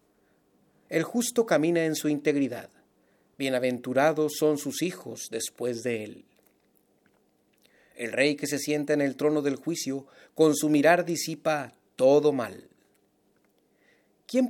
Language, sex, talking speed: Spanish, male, 125 wpm